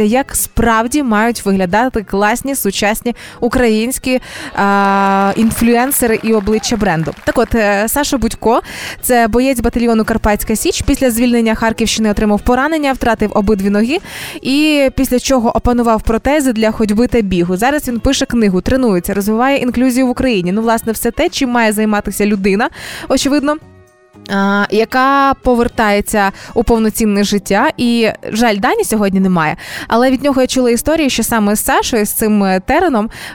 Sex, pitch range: female, 210-255 Hz